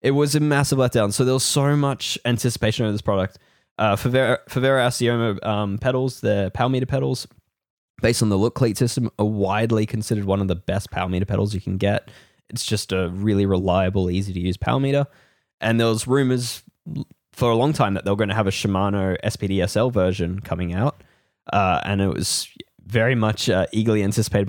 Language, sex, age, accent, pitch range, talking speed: English, male, 10-29, Australian, 95-120 Hz, 205 wpm